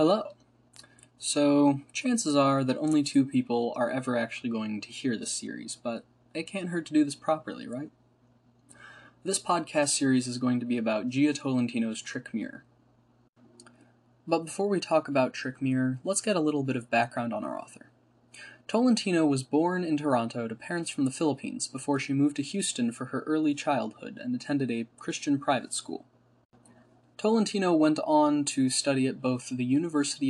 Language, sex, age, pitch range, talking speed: English, male, 10-29, 125-155 Hz, 175 wpm